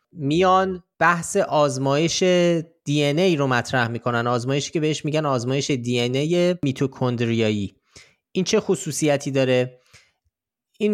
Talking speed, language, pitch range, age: 115 wpm, Persian, 125-155 Hz, 30-49